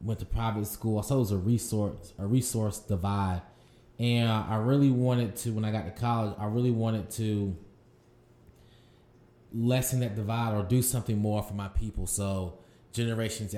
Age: 20-39